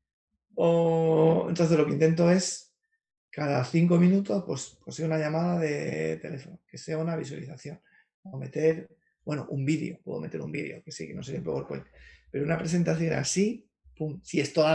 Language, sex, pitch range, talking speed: Spanish, male, 150-170 Hz, 170 wpm